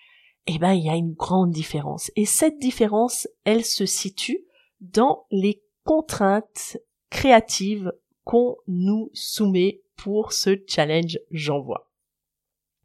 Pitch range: 190-255 Hz